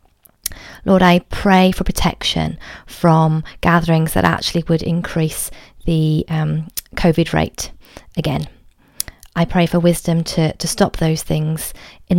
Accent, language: British, English